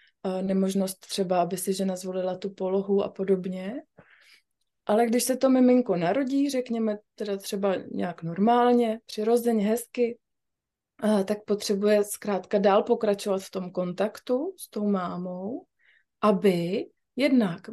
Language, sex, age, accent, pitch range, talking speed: Czech, female, 20-39, native, 190-215 Hz, 120 wpm